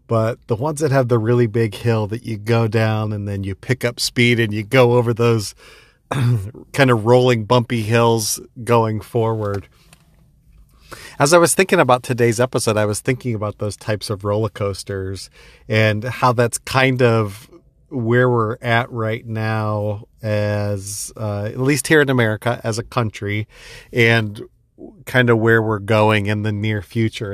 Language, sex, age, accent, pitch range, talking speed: English, male, 40-59, American, 110-125 Hz, 170 wpm